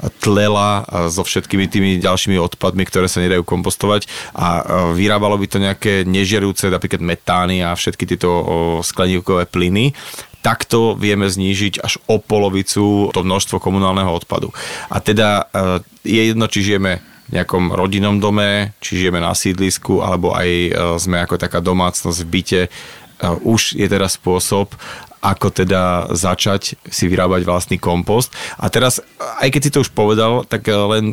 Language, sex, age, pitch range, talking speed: Slovak, male, 30-49, 90-105 Hz, 145 wpm